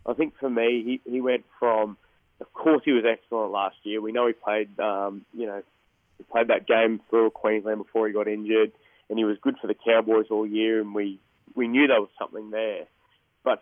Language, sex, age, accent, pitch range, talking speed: English, male, 20-39, Australian, 105-120 Hz, 220 wpm